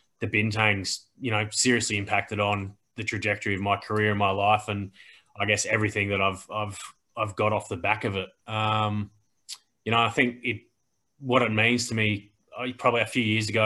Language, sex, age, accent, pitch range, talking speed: English, male, 20-39, Australian, 105-115 Hz, 200 wpm